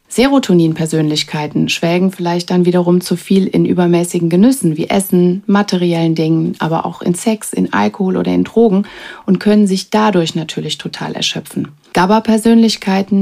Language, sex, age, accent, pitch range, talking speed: German, female, 30-49, German, 170-205 Hz, 140 wpm